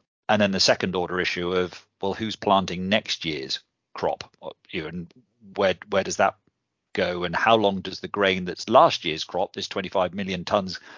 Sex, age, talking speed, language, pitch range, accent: male, 40-59, 185 wpm, English, 90-105 Hz, British